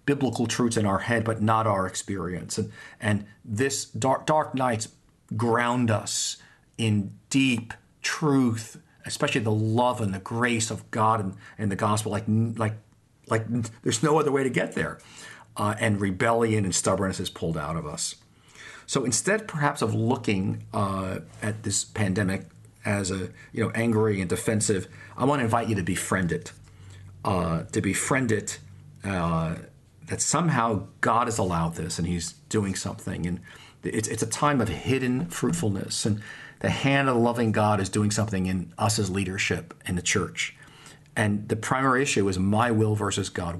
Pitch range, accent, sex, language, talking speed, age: 95-120 Hz, American, male, English, 170 wpm, 40-59